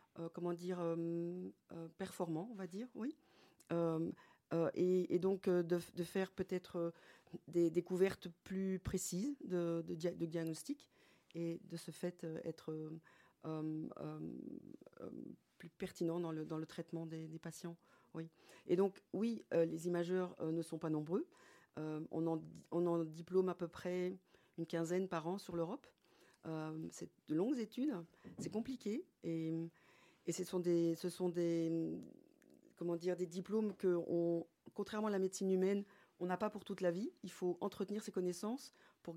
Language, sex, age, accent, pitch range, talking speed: French, female, 40-59, French, 165-190 Hz, 175 wpm